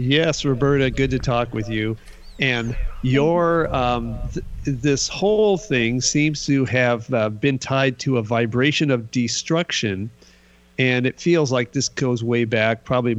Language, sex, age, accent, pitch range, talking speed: English, male, 50-69, American, 115-140 Hz, 155 wpm